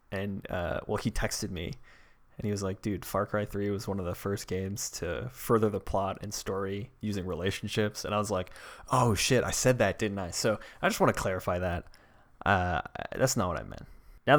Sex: male